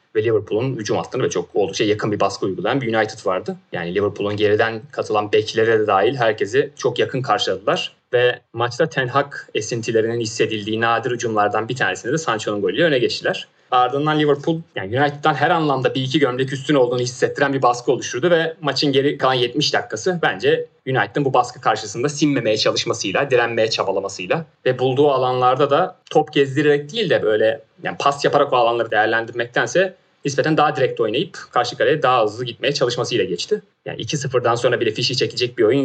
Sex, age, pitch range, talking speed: male, 30-49, 125-180 Hz, 175 wpm